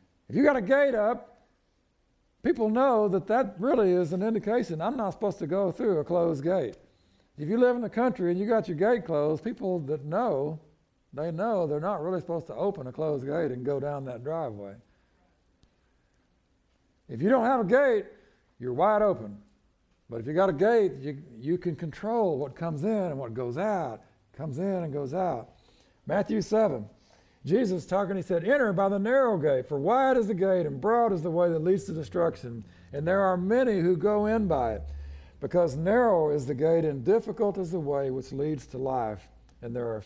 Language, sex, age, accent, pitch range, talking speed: English, male, 60-79, American, 130-205 Hz, 205 wpm